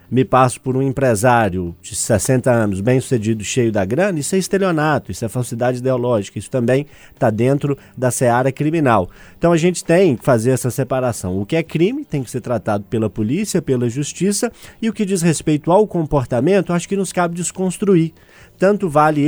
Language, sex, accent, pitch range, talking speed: Portuguese, male, Brazilian, 115-150 Hz, 190 wpm